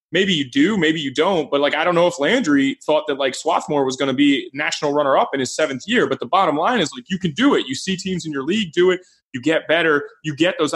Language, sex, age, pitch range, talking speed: English, male, 20-39, 145-185 Hz, 285 wpm